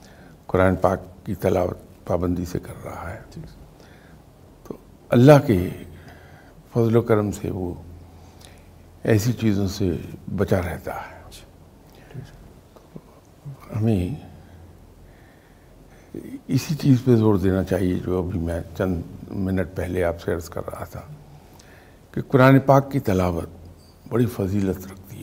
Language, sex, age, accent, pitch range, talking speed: English, male, 60-79, Indian, 85-105 Hz, 120 wpm